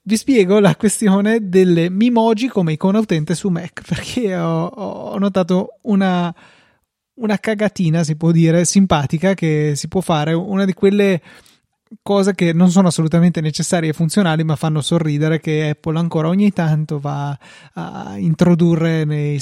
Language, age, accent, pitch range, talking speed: Italian, 20-39, native, 155-185 Hz, 150 wpm